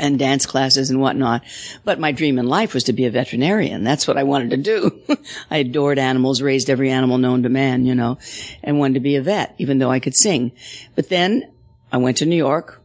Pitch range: 130-150 Hz